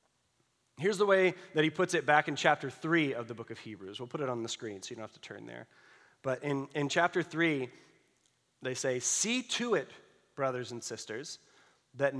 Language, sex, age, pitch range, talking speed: English, male, 30-49, 125-175 Hz, 210 wpm